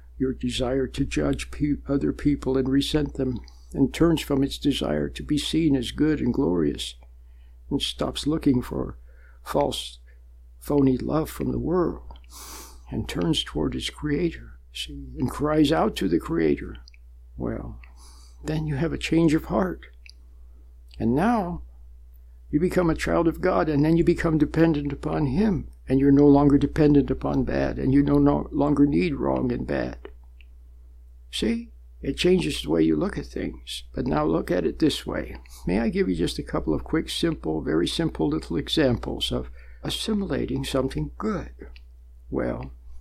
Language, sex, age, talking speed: English, male, 60-79, 160 wpm